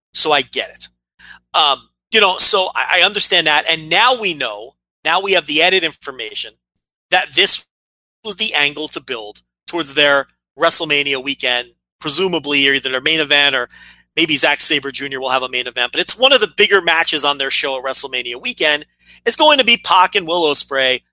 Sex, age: male, 30-49